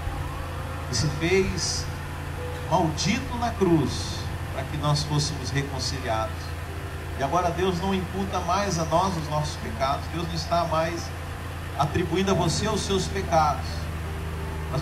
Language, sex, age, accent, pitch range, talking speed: Portuguese, male, 40-59, Brazilian, 80-100 Hz, 135 wpm